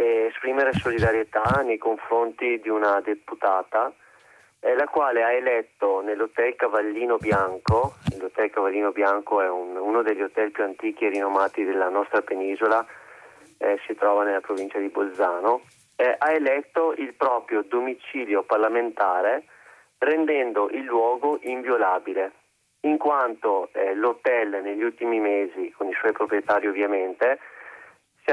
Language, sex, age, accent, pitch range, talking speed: Italian, male, 30-49, native, 105-140 Hz, 125 wpm